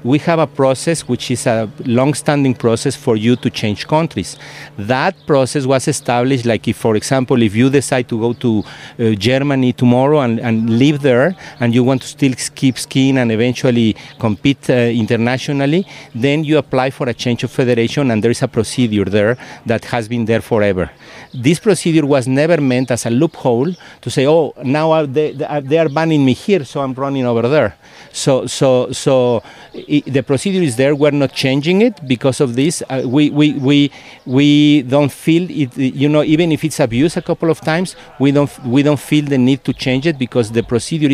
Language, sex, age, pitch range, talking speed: English, male, 50-69, 120-150 Hz, 200 wpm